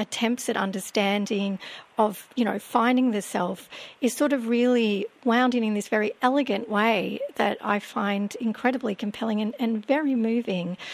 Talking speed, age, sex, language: 160 wpm, 40-59, female, English